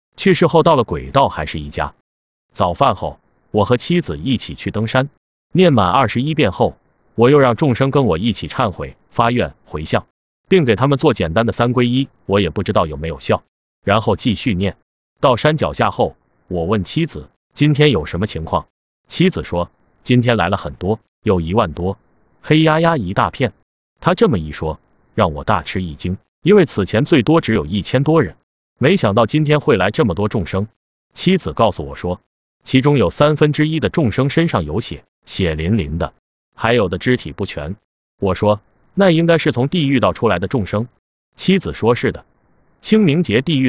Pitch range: 95-150 Hz